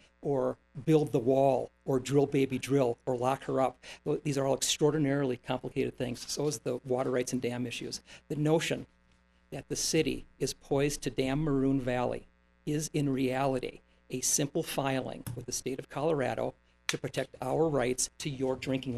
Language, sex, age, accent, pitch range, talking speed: English, male, 50-69, American, 120-150 Hz, 175 wpm